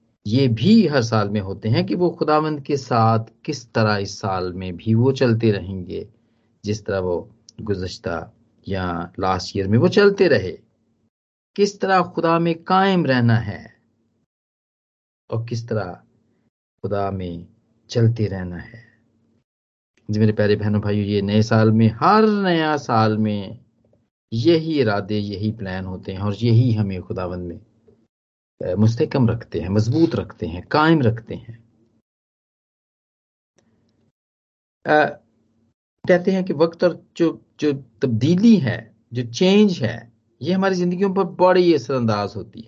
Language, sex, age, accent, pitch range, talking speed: Hindi, male, 40-59, native, 105-150 Hz, 140 wpm